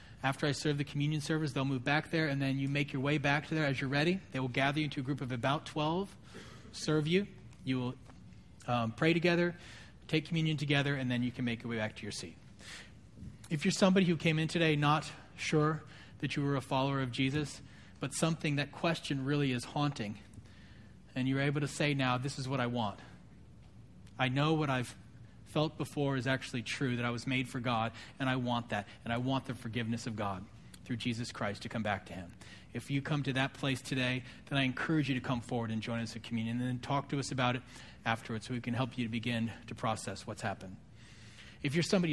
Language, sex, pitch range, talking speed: English, male, 120-155 Hz, 230 wpm